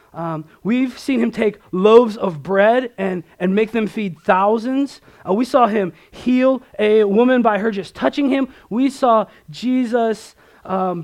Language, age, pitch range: English, 20-39, 160-215 Hz